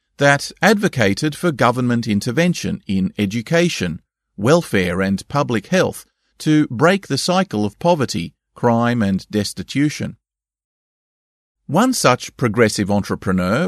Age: 40-59